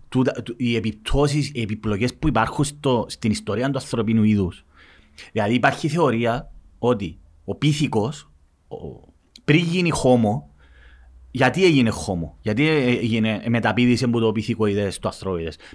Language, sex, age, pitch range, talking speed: Greek, male, 30-49, 105-155 Hz, 120 wpm